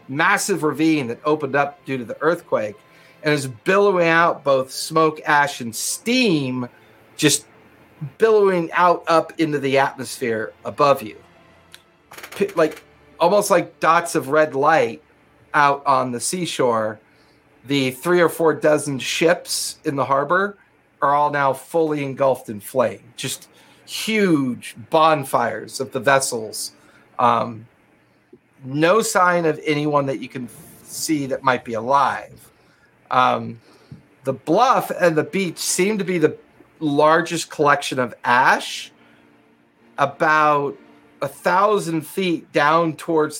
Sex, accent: male, American